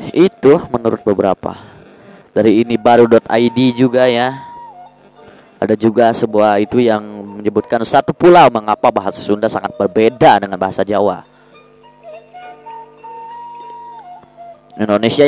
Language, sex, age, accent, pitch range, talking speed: Indonesian, female, 20-39, native, 115-170 Hz, 100 wpm